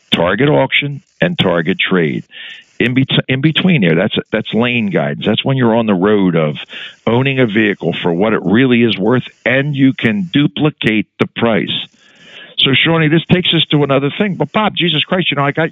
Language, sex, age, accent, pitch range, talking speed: English, male, 60-79, American, 125-165 Hz, 200 wpm